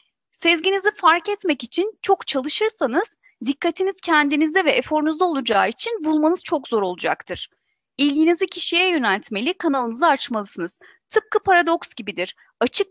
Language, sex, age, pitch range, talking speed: Turkish, female, 30-49, 260-360 Hz, 115 wpm